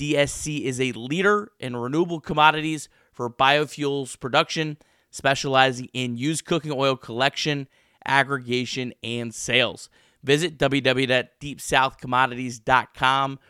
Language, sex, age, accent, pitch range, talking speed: English, male, 30-49, American, 125-155 Hz, 95 wpm